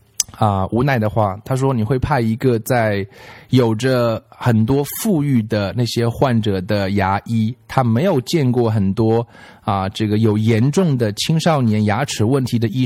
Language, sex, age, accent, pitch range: Chinese, male, 20-39, native, 105-140 Hz